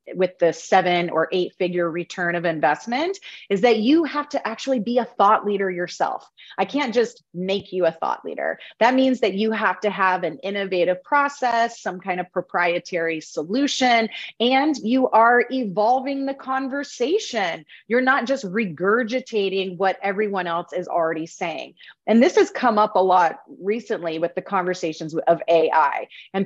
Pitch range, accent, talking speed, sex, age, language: 185-255 Hz, American, 165 wpm, female, 30-49, English